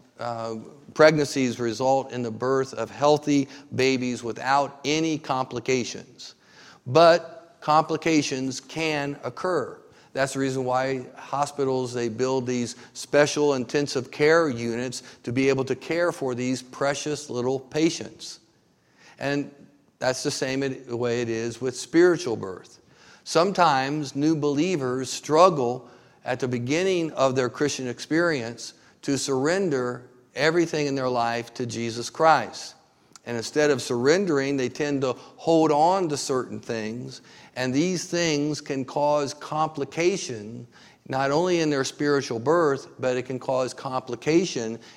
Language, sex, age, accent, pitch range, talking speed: English, male, 50-69, American, 125-150 Hz, 130 wpm